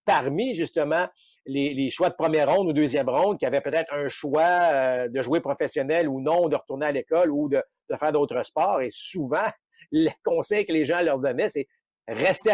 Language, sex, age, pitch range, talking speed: French, male, 50-69, 145-225 Hz, 205 wpm